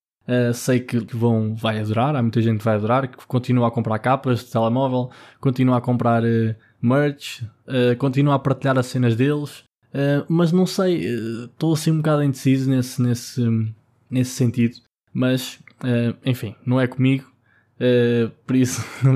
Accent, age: Brazilian, 20-39